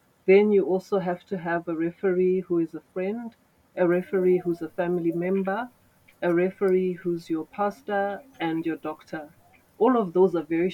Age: 30-49